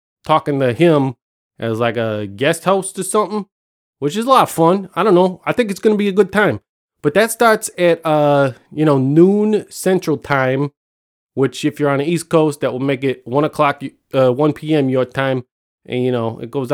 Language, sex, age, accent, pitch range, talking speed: English, male, 20-39, American, 130-170 Hz, 215 wpm